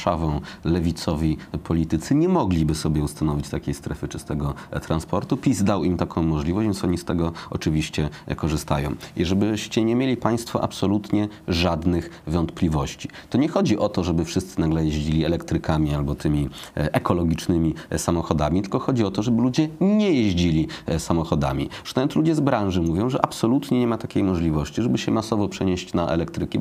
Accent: native